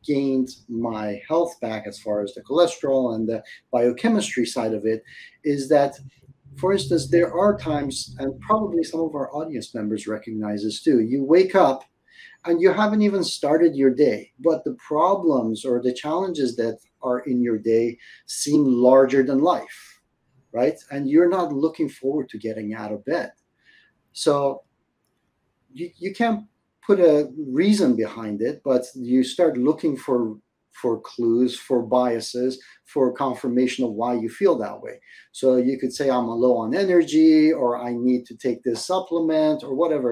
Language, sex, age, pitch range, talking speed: English, male, 40-59, 125-160 Hz, 170 wpm